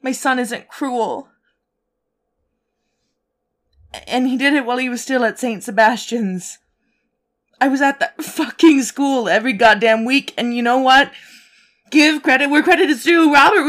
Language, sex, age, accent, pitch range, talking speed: English, female, 20-39, American, 225-275 Hz, 155 wpm